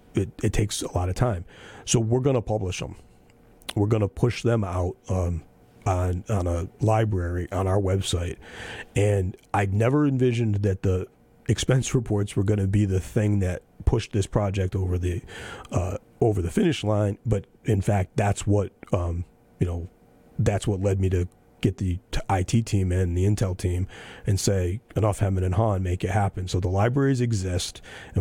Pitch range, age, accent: 90-110 Hz, 40-59, American